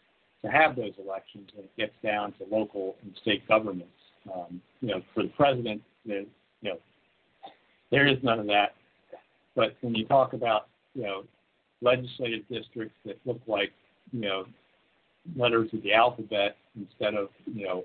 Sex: male